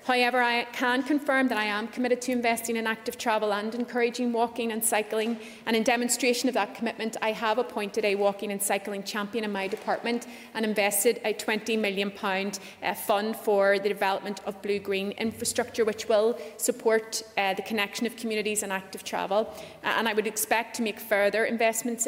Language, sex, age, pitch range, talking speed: English, female, 30-49, 205-235 Hz, 180 wpm